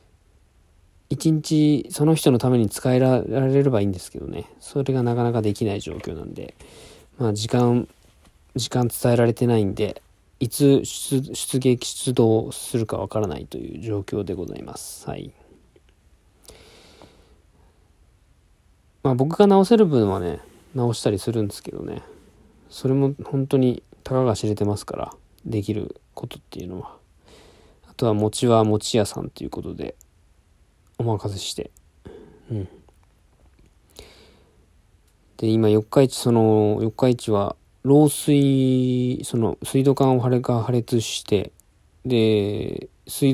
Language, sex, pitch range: Japanese, male, 100-130 Hz